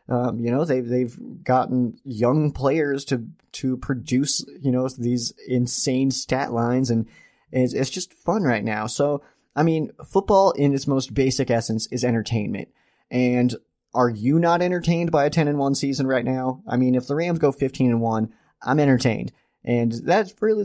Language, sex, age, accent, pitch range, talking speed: English, male, 30-49, American, 115-140 Hz, 180 wpm